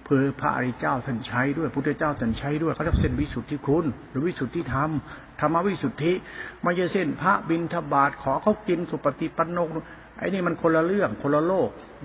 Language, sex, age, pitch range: Thai, male, 60-79, 120-150 Hz